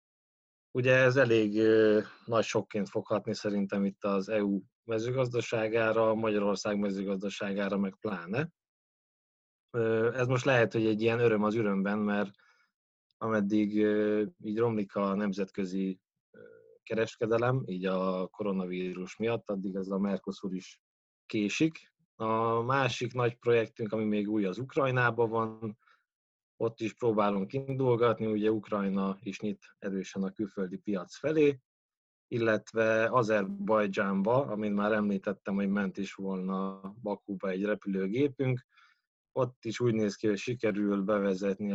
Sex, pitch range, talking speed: male, 100-115 Hz, 120 wpm